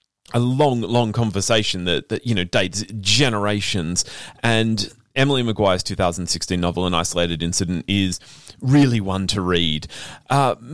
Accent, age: Australian, 30-49